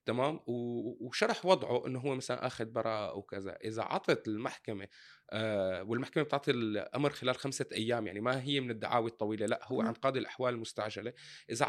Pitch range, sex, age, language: 115-140 Hz, male, 20-39, Arabic